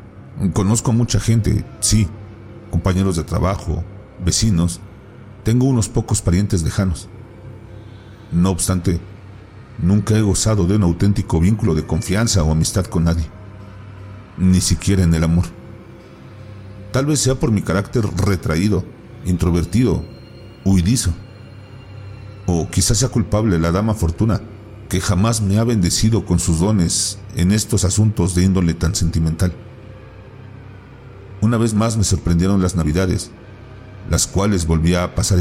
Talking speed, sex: 130 wpm, male